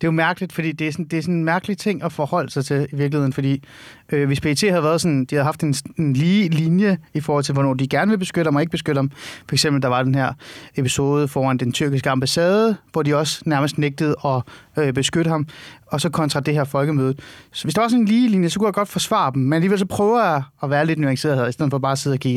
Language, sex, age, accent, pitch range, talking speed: Danish, male, 30-49, native, 140-175 Hz, 275 wpm